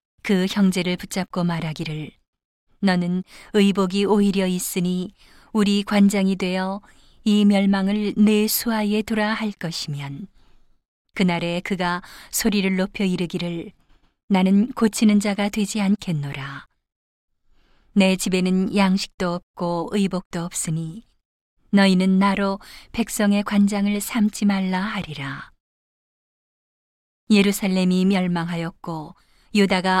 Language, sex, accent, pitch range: Korean, female, native, 180-205 Hz